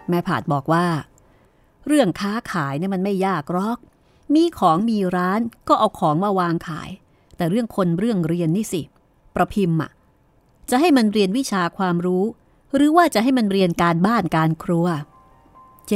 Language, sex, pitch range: Thai, female, 160-210 Hz